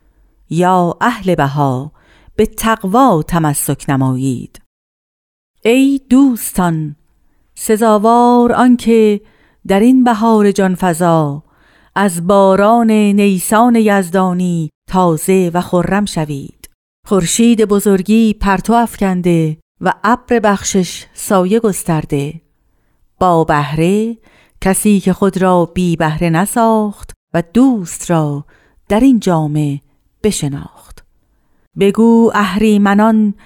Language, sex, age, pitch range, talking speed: Persian, female, 50-69, 170-210 Hz, 90 wpm